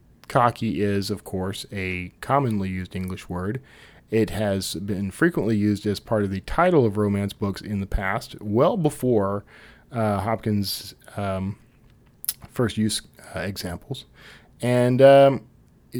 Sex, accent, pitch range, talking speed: male, American, 100-130 Hz, 130 wpm